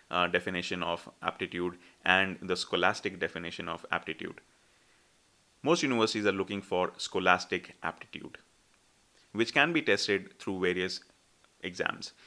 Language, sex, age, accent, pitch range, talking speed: English, male, 30-49, Indian, 90-105 Hz, 110 wpm